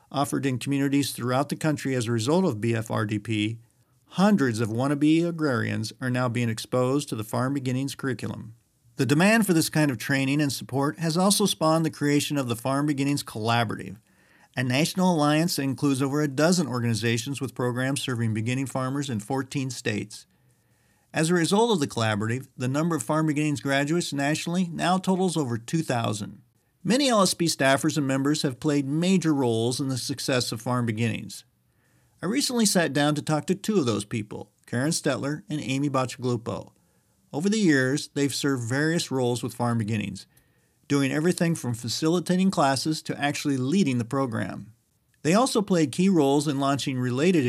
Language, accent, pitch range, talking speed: English, American, 120-155 Hz, 170 wpm